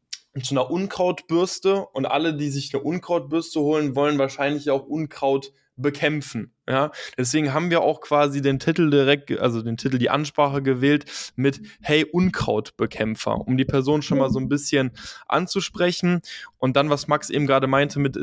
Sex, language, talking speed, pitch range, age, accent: male, German, 165 wpm, 135-160 Hz, 10-29, German